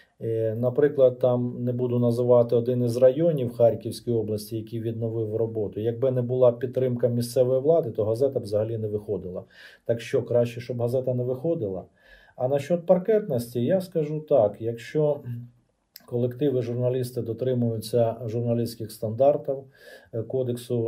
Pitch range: 115-130 Hz